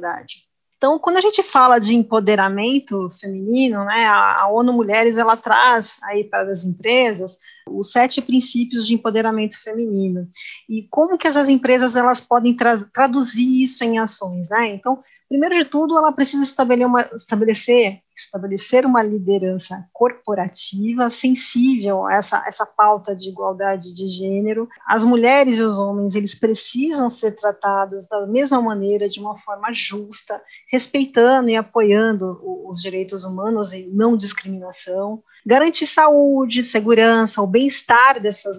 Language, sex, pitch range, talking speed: Portuguese, female, 205-250 Hz, 140 wpm